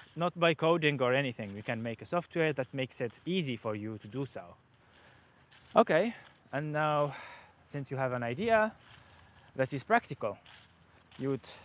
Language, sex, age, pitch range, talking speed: English, male, 20-39, 115-160 Hz, 165 wpm